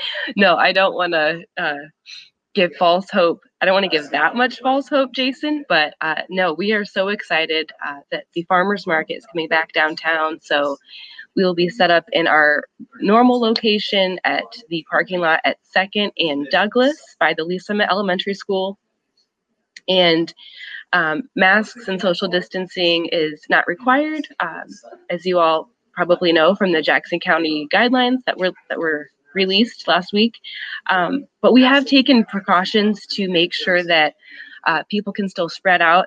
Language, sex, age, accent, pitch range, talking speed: English, female, 20-39, American, 170-230 Hz, 170 wpm